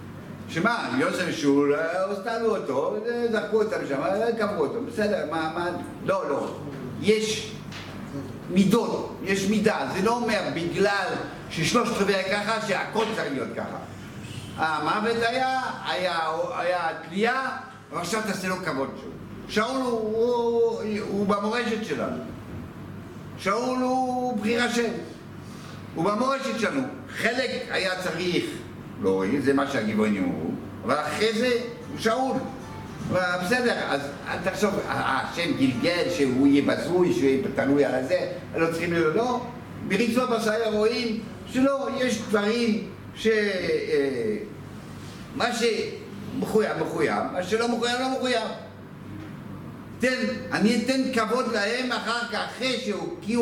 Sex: male